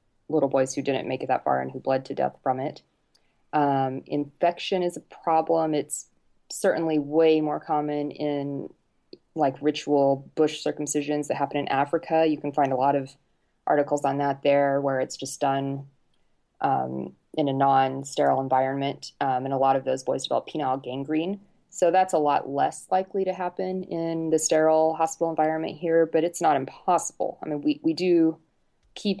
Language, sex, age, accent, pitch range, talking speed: English, female, 20-39, American, 135-160 Hz, 180 wpm